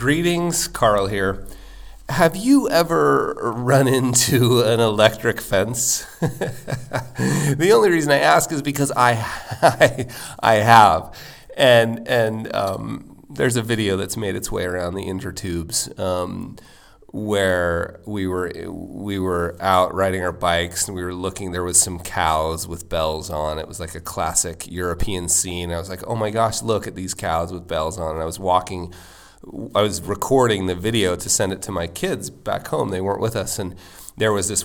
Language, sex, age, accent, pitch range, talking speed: English, male, 30-49, American, 90-115 Hz, 175 wpm